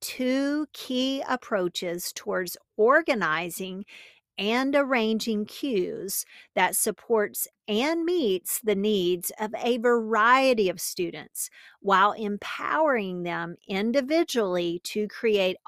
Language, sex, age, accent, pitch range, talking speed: English, female, 40-59, American, 195-245 Hz, 95 wpm